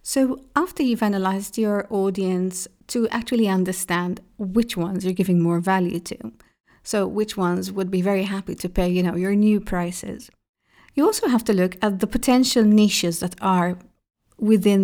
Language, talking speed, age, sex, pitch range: English, 170 wpm, 40-59, female, 185-230 Hz